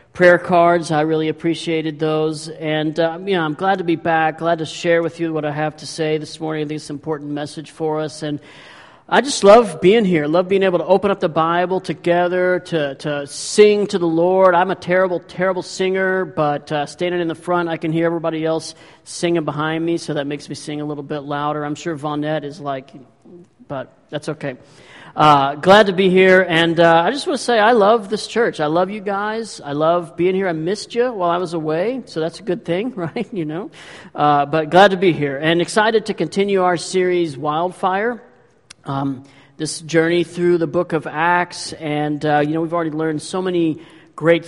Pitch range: 155-180 Hz